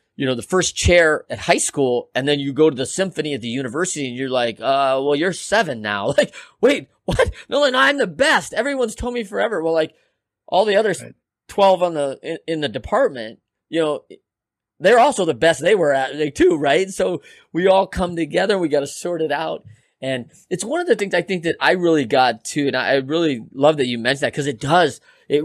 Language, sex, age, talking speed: English, male, 30-49, 235 wpm